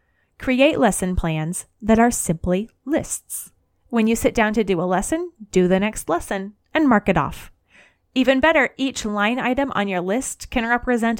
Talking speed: 175 wpm